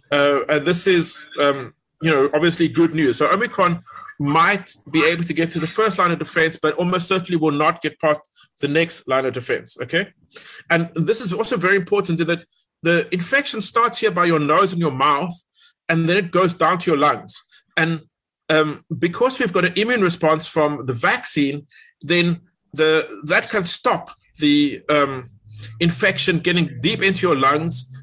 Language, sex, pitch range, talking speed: English, male, 150-185 Hz, 180 wpm